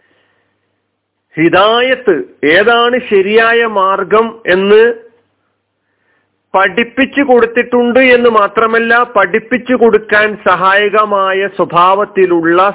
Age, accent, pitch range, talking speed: 50-69, native, 170-230 Hz, 60 wpm